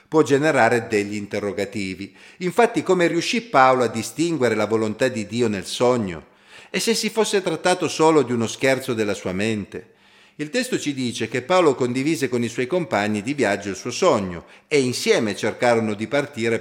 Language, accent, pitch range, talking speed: Italian, native, 105-145 Hz, 175 wpm